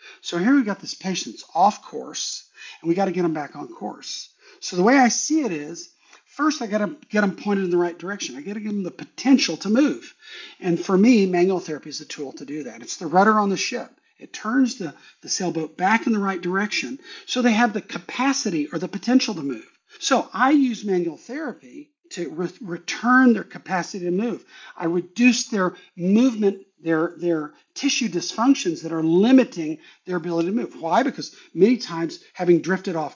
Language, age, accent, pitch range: English, 50-69, American, 170-250 Hz